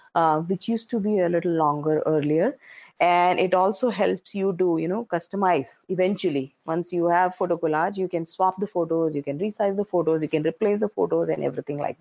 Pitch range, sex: 160-200 Hz, female